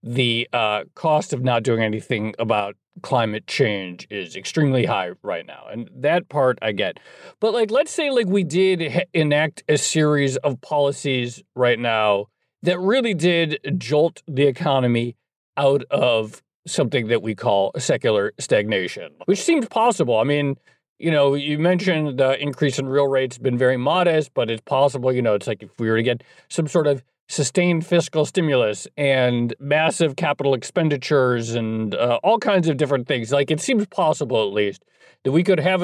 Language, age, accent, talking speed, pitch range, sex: English, 40-59, American, 175 wpm, 125-170 Hz, male